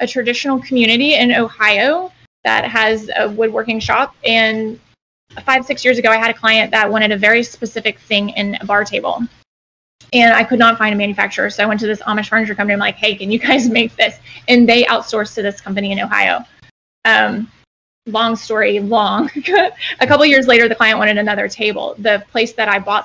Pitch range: 210-240 Hz